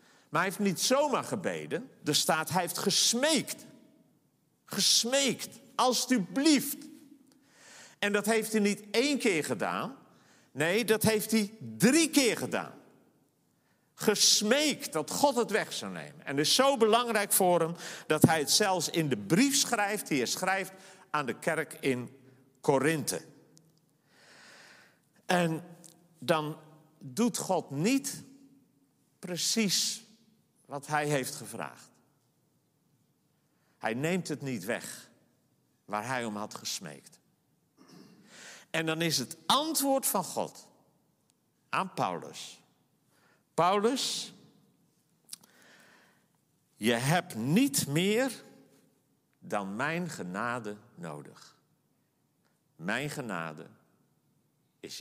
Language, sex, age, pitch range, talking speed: Dutch, male, 50-69, 150-225 Hz, 110 wpm